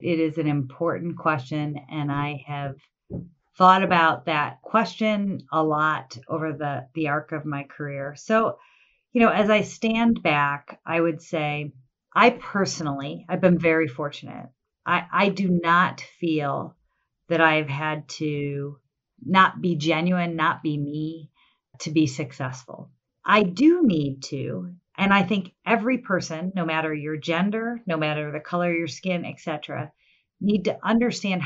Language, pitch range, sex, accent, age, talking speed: English, 155-195 Hz, female, American, 40-59, 150 wpm